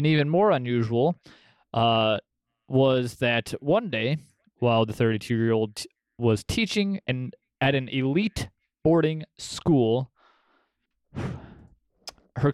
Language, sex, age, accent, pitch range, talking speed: English, male, 20-39, American, 120-155 Hz, 105 wpm